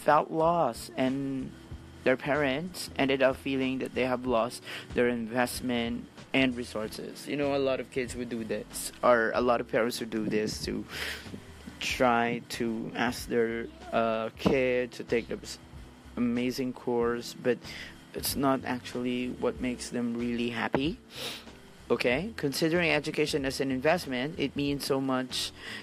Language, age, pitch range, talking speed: English, 30-49, 115-130 Hz, 150 wpm